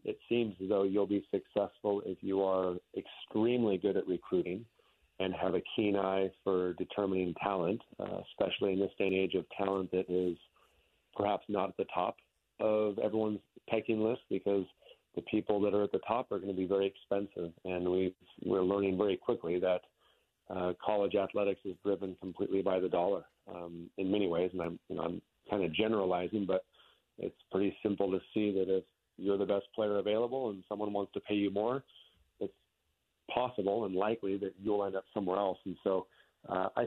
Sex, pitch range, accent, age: male, 95-105 Hz, American, 40-59